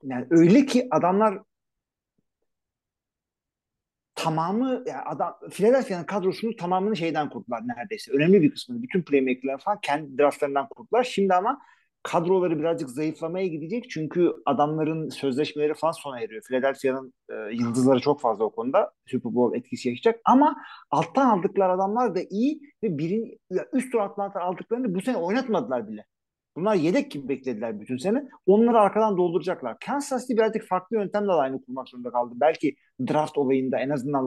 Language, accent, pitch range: Turkish, native, 135-220 Hz